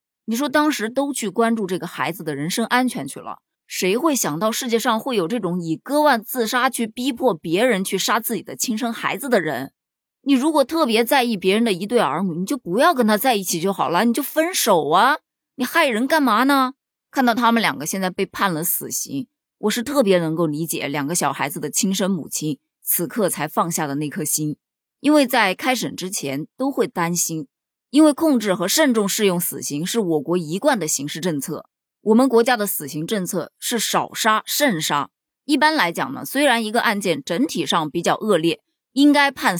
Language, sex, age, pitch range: Chinese, female, 20-39, 170-255 Hz